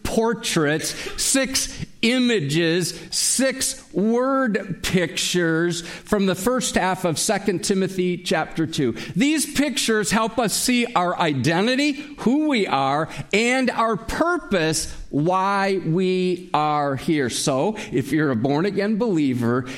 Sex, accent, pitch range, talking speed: male, American, 160-205 Hz, 115 wpm